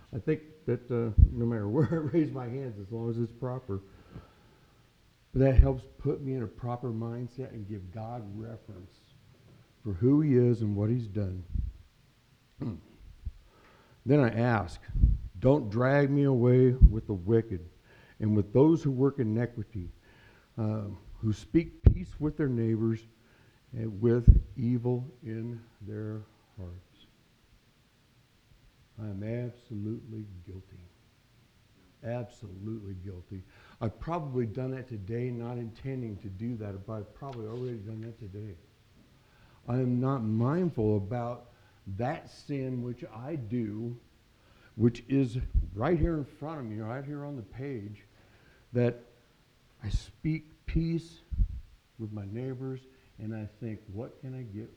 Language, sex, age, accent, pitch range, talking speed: English, male, 60-79, American, 105-130 Hz, 140 wpm